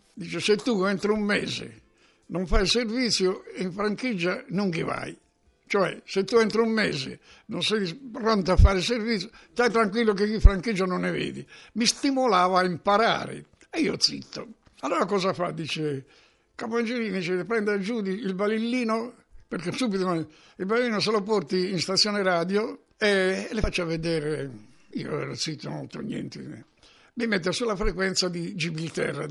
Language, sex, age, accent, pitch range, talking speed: Italian, male, 60-79, native, 160-210 Hz, 160 wpm